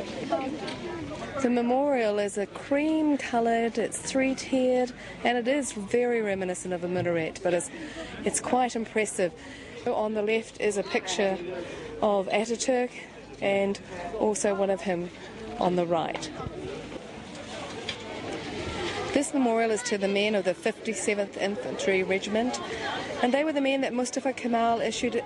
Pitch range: 175-230 Hz